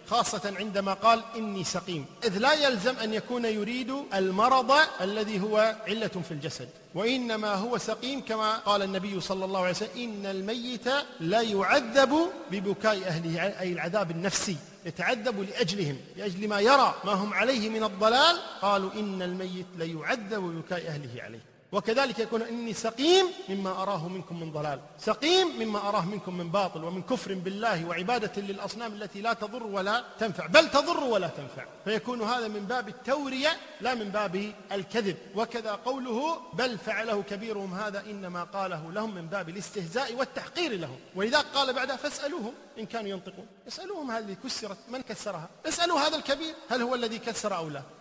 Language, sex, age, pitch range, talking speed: Arabic, male, 50-69, 190-245 Hz, 160 wpm